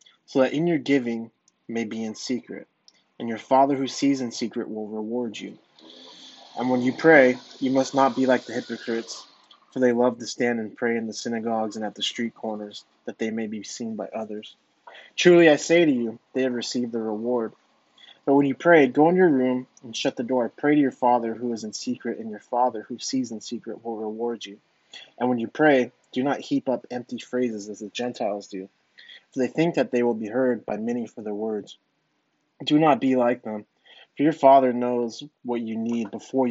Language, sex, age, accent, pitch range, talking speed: English, male, 20-39, American, 110-125 Hz, 215 wpm